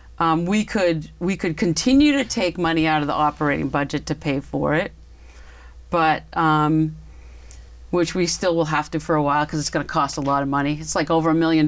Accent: American